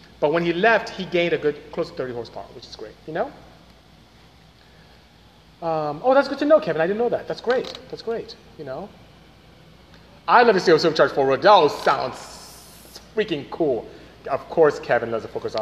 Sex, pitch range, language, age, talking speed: male, 150-230 Hz, English, 30-49, 195 wpm